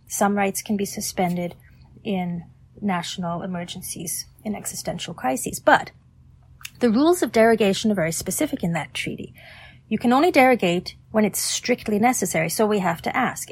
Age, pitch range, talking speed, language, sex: 30-49, 175-225 Hz, 155 wpm, English, female